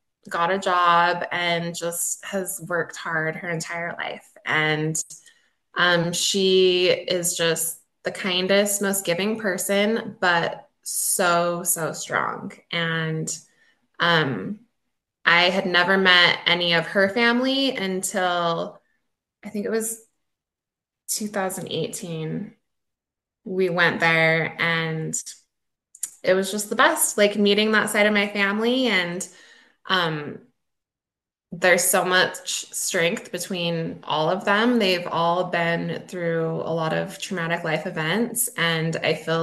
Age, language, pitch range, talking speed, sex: 20-39, English, 165-200 Hz, 120 wpm, female